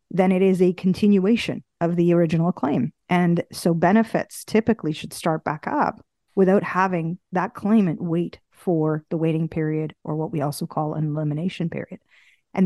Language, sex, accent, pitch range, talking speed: English, female, American, 165-210 Hz, 165 wpm